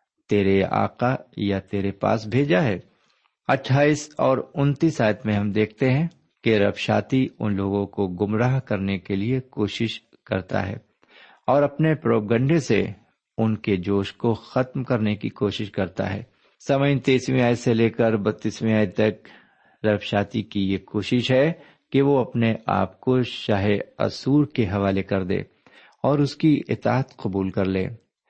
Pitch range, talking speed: 100-130 Hz, 155 wpm